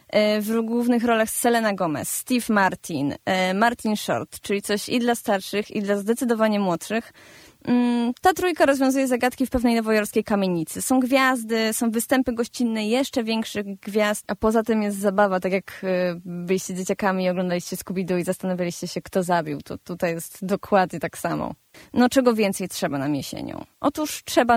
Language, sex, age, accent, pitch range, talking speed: Polish, female, 20-39, native, 200-240 Hz, 160 wpm